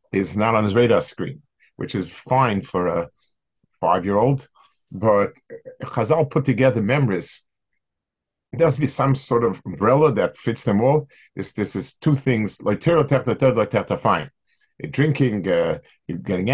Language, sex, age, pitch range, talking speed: English, male, 50-69, 110-145 Hz, 140 wpm